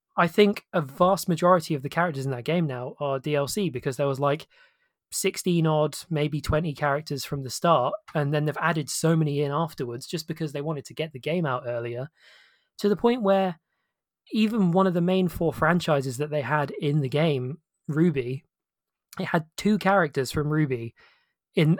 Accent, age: British, 20-39